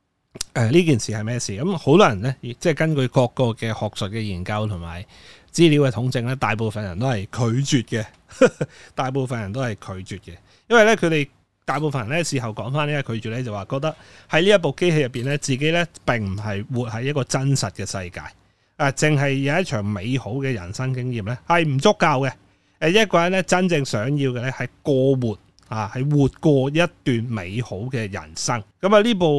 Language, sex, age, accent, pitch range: Chinese, male, 30-49, native, 110-150 Hz